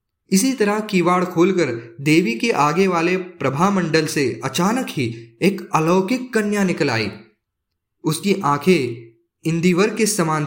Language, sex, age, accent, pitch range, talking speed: Hindi, male, 20-39, native, 135-195 Hz, 130 wpm